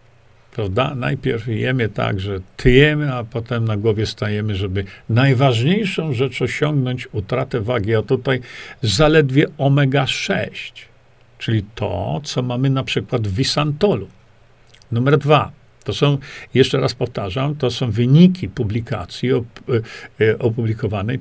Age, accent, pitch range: 50-69, native, 115-150 Hz